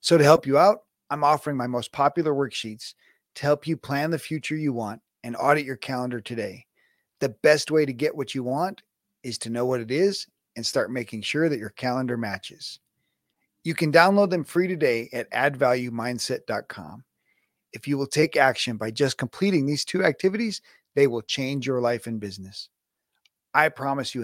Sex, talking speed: male, 185 wpm